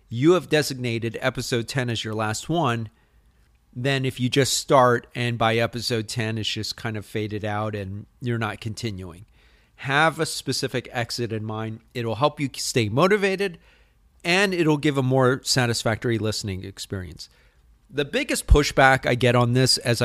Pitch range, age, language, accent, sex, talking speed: 110-140 Hz, 40-59, English, American, male, 165 wpm